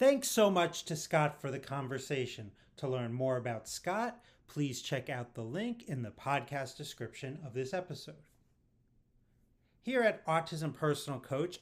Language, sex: English, male